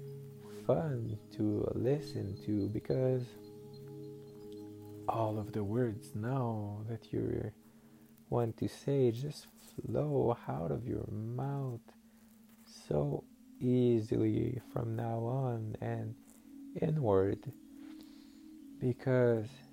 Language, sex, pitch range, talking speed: English, male, 110-140 Hz, 90 wpm